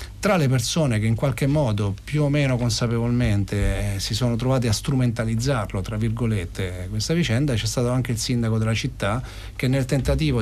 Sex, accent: male, native